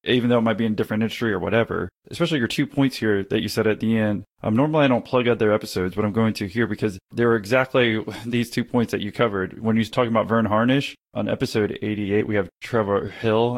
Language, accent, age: English, American, 20-39